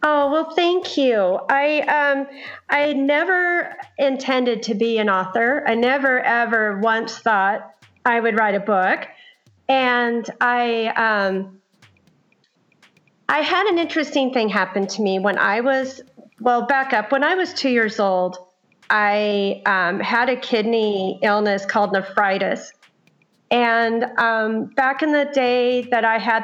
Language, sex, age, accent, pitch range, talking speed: English, female, 40-59, American, 200-255 Hz, 145 wpm